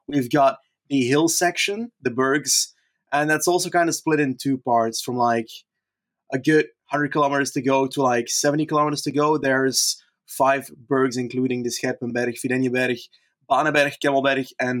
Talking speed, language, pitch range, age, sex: 160 wpm, English, 125-145 Hz, 20-39, male